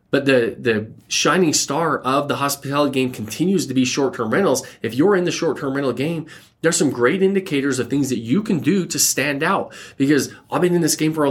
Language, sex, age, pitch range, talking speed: English, male, 20-39, 115-155 Hz, 225 wpm